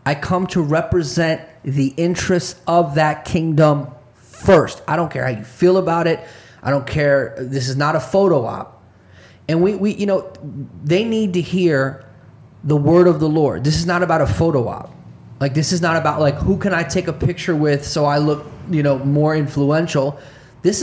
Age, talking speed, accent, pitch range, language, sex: 30-49, 200 wpm, American, 140-175 Hz, English, male